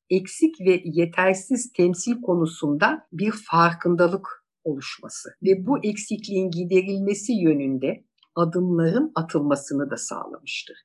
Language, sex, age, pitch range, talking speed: Turkish, female, 60-79, 160-235 Hz, 95 wpm